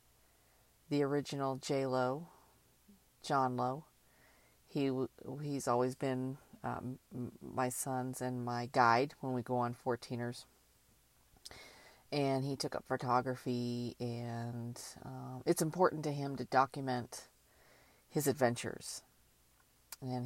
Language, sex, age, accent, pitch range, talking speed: English, female, 40-59, American, 125-145 Hz, 105 wpm